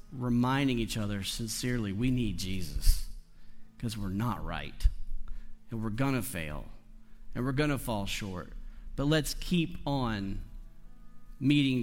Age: 40-59